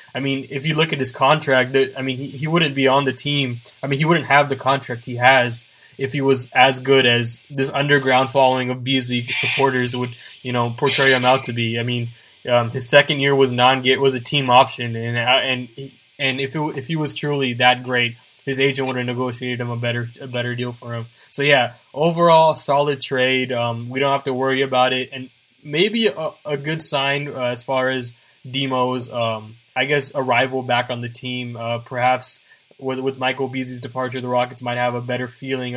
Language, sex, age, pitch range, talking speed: English, male, 20-39, 120-140 Hz, 215 wpm